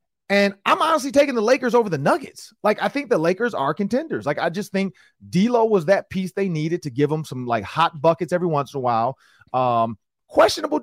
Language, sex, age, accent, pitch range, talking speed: English, male, 30-49, American, 135-200 Hz, 220 wpm